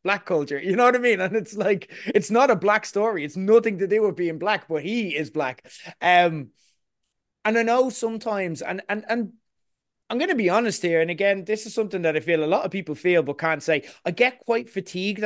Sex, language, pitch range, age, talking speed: male, English, 155-210 Hz, 20-39, 235 wpm